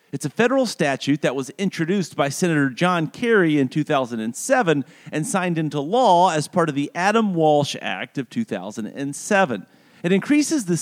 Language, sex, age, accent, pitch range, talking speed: English, male, 40-59, American, 135-210 Hz, 160 wpm